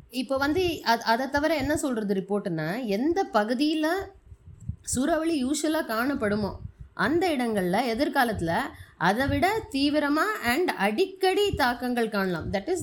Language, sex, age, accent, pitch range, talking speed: Tamil, female, 20-39, native, 200-280 Hz, 115 wpm